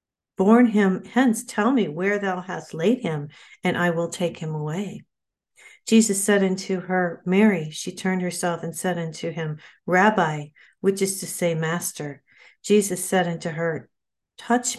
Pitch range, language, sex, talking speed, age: 165-195 Hz, English, female, 160 wpm, 50-69